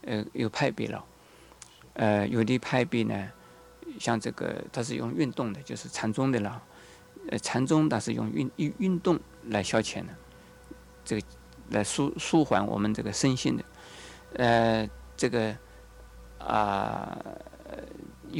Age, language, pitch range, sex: 50-69, Chinese, 110-160 Hz, male